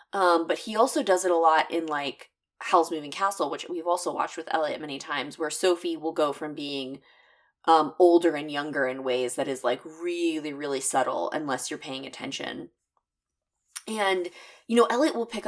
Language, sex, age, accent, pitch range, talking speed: English, female, 20-39, American, 165-235 Hz, 190 wpm